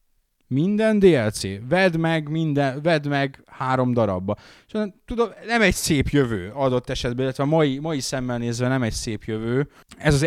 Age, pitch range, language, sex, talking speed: 20-39, 115-140 Hz, Hungarian, male, 165 wpm